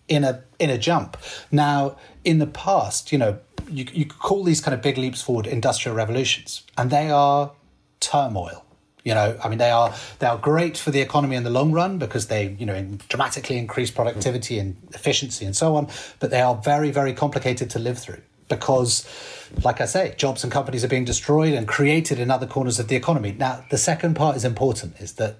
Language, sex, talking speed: English, male, 210 wpm